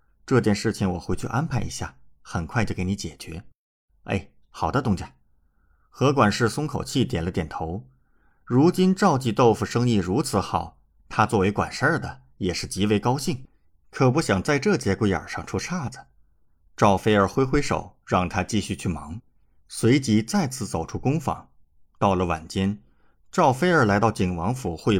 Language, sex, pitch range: Chinese, male, 85-125 Hz